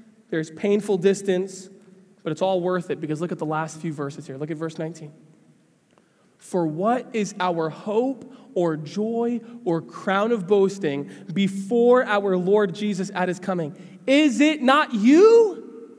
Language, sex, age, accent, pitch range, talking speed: English, male, 20-39, American, 180-255 Hz, 160 wpm